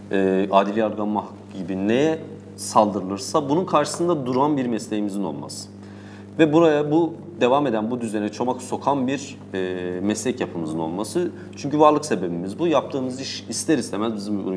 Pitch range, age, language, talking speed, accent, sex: 100-125 Hz, 40-59, Turkish, 145 wpm, native, male